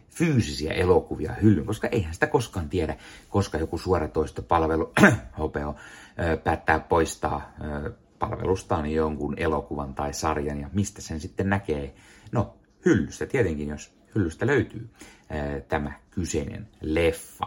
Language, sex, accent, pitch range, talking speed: Finnish, male, native, 80-105 Hz, 125 wpm